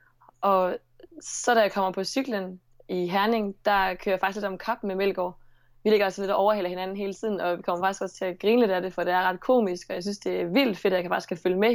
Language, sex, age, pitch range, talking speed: Danish, female, 20-39, 180-215 Hz, 290 wpm